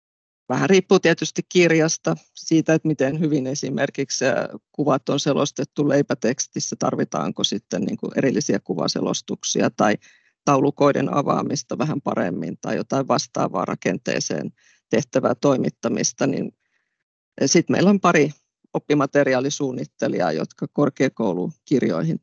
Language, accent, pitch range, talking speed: Finnish, native, 130-165 Hz, 95 wpm